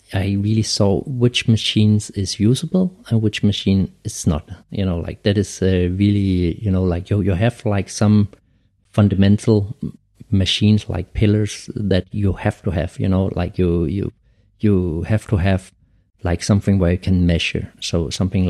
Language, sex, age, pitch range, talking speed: English, male, 50-69, 90-105 Hz, 170 wpm